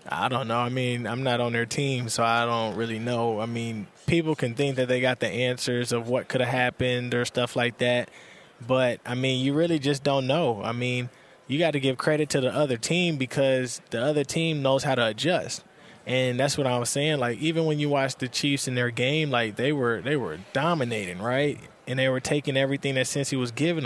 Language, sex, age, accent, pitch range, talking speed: English, male, 20-39, American, 125-155 Hz, 235 wpm